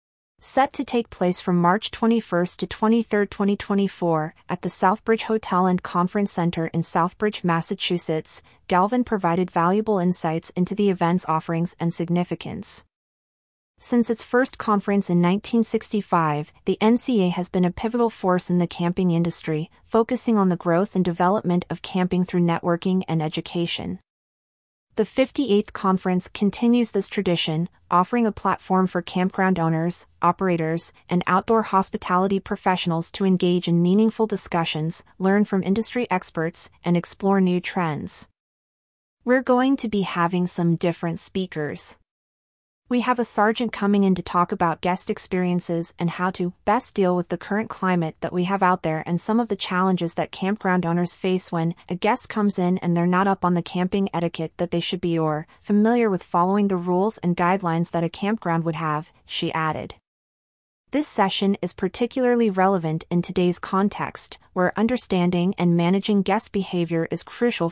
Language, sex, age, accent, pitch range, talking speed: English, female, 30-49, American, 170-205 Hz, 160 wpm